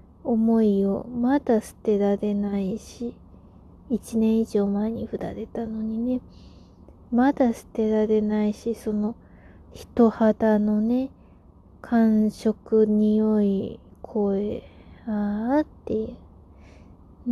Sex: female